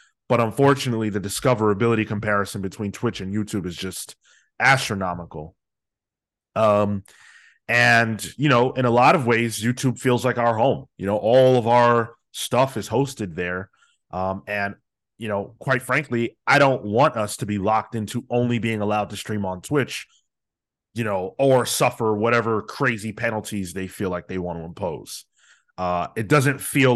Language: English